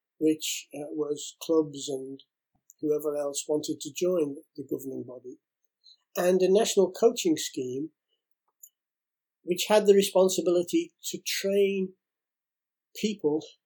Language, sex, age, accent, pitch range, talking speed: English, male, 60-79, British, 150-185 Hz, 105 wpm